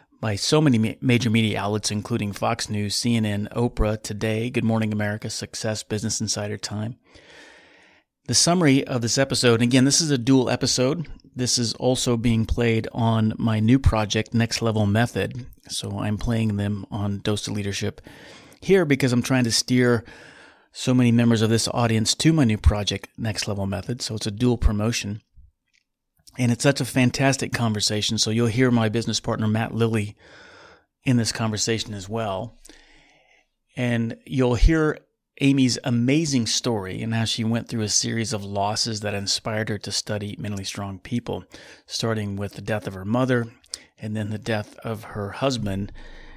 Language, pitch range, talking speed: English, 105-120 Hz, 170 wpm